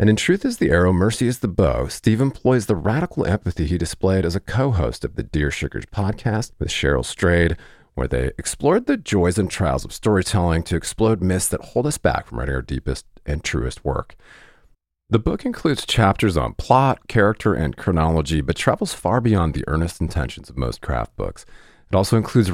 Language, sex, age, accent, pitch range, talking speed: English, male, 40-59, American, 80-115 Hz, 195 wpm